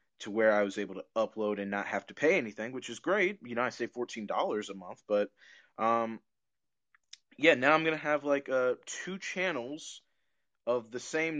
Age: 20-39